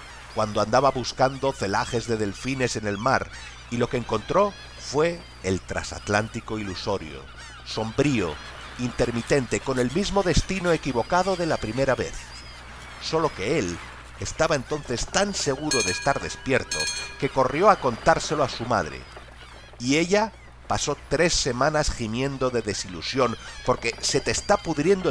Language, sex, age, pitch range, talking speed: English, male, 50-69, 100-140 Hz, 140 wpm